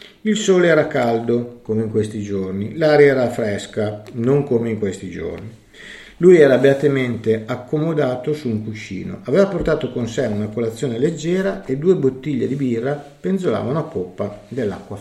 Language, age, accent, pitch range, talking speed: Italian, 50-69, native, 105-145 Hz, 155 wpm